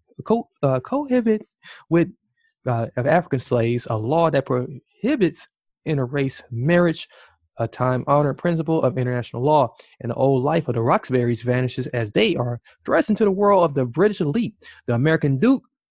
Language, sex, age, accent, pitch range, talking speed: English, male, 20-39, American, 125-155 Hz, 160 wpm